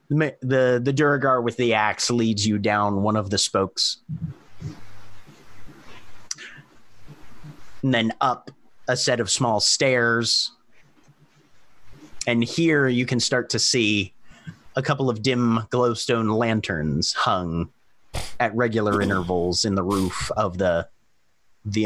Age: 30-49